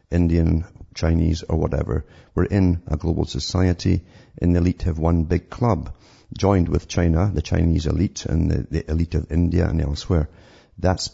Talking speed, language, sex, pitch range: 165 wpm, English, male, 80-95 Hz